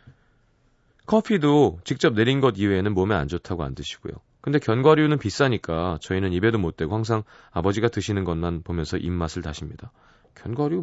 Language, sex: Korean, male